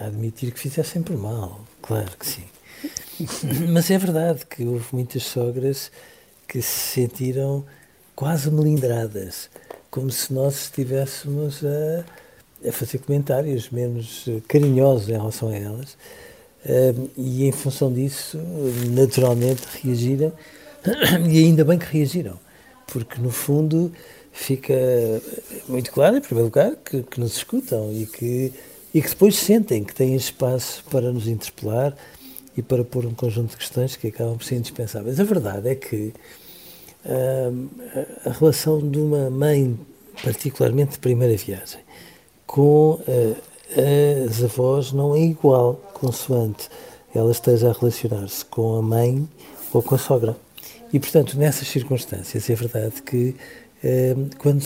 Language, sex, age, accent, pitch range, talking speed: Portuguese, male, 60-79, Portuguese, 120-145 Hz, 135 wpm